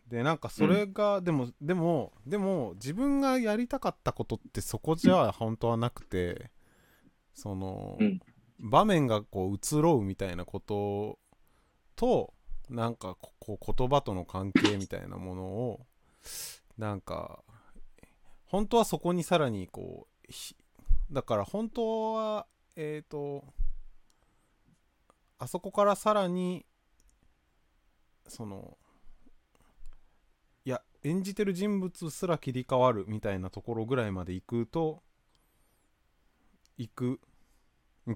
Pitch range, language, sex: 95-160 Hz, Japanese, male